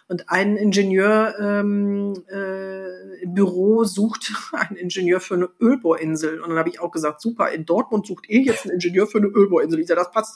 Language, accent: German, German